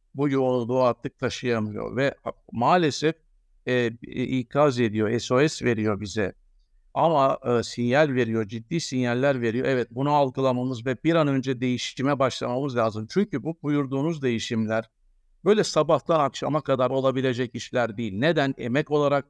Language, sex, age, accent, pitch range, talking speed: Turkish, male, 60-79, native, 125-155 Hz, 130 wpm